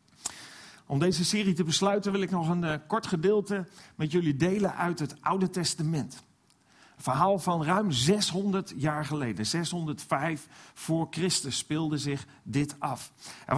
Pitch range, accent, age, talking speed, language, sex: 135-185 Hz, Dutch, 40-59, 150 wpm, Dutch, male